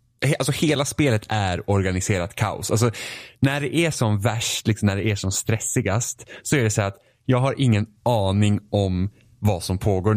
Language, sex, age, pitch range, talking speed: Swedish, male, 20-39, 95-120 Hz, 185 wpm